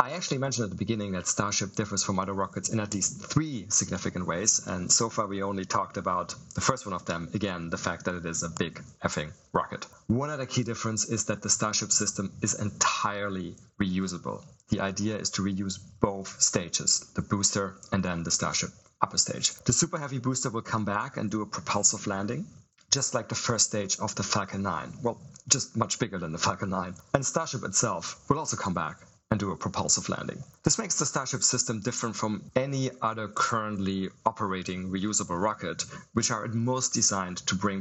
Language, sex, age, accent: English, male, 40-59, German